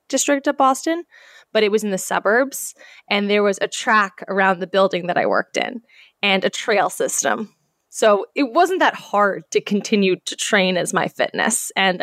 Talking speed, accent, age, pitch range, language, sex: 190 wpm, American, 10-29, 185-225 Hz, English, female